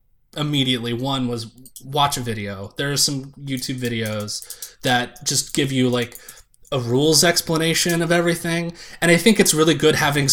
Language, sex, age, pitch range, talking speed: English, male, 20-39, 120-150 Hz, 165 wpm